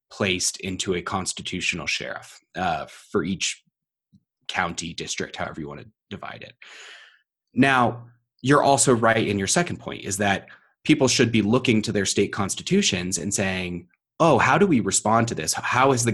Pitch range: 100-125 Hz